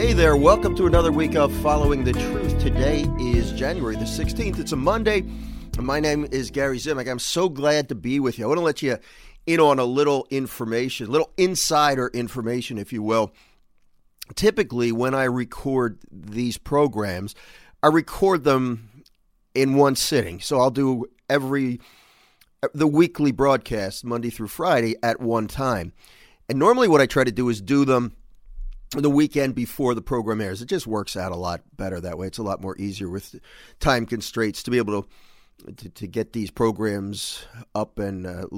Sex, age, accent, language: male, 40-59, American, English